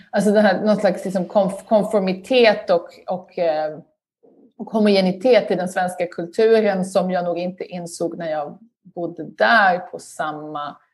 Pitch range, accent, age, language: 170-205 Hz, native, 30-49, Swedish